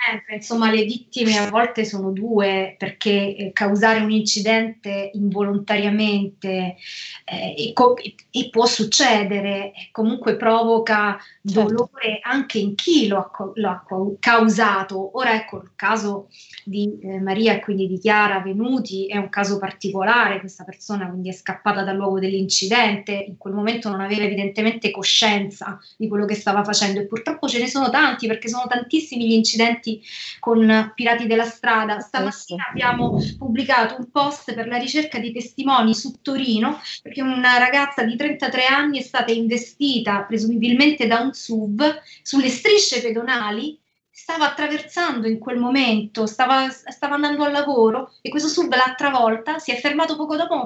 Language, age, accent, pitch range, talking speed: Italian, 20-39, native, 200-250 Hz, 160 wpm